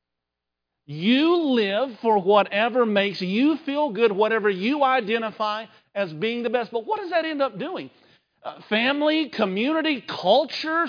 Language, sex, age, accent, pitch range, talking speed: English, male, 50-69, American, 135-225 Hz, 145 wpm